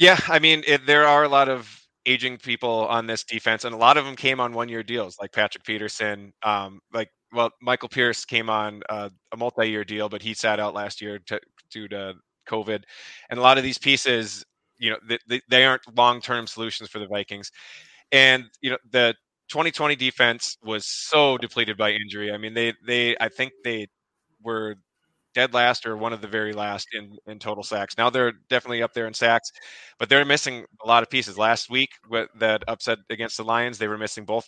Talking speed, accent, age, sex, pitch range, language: 205 wpm, American, 20-39, male, 105-125 Hz, English